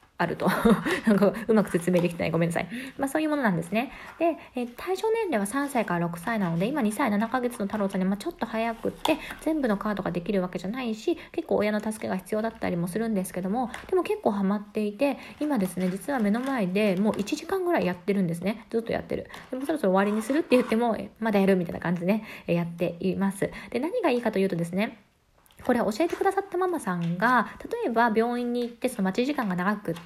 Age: 20-39